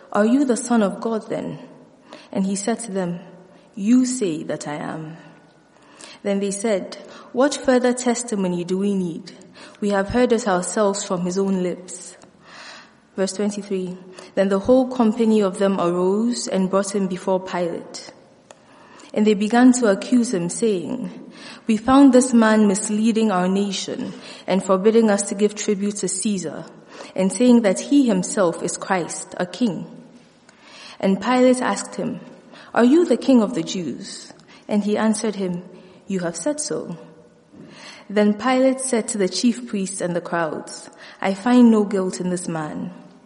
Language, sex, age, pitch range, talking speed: English, female, 20-39, 190-240 Hz, 160 wpm